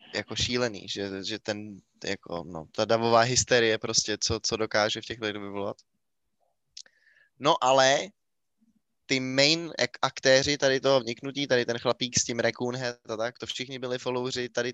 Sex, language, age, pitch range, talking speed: male, Czech, 20-39, 110-130 Hz, 165 wpm